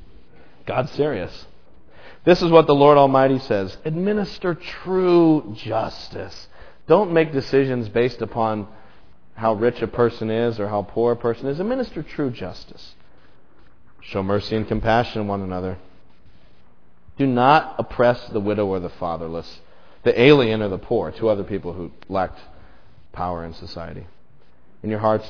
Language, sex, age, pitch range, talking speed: English, male, 40-59, 90-120 Hz, 145 wpm